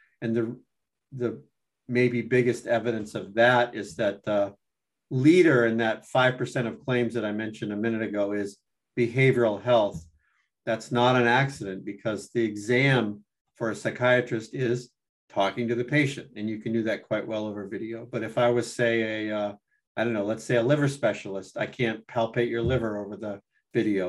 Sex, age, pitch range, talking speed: male, 50-69, 110-125 Hz, 185 wpm